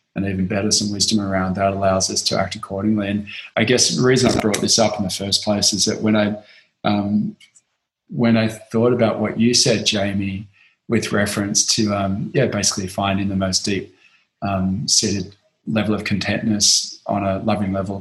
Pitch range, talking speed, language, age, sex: 100-115 Hz, 190 wpm, English, 20-39, male